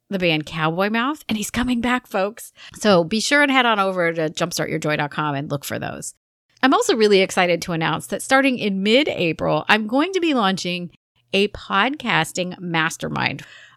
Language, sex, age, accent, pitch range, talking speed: English, female, 30-49, American, 165-240 Hz, 175 wpm